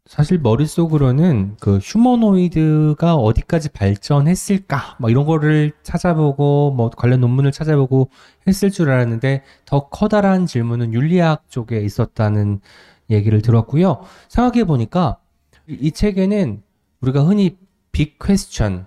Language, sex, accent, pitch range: Korean, male, native, 115-175 Hz